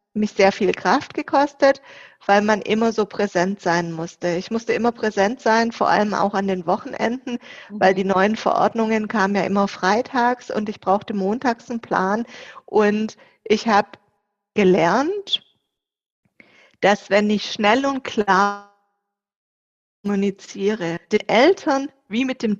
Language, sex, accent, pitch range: German, female, German, 195-240 Hz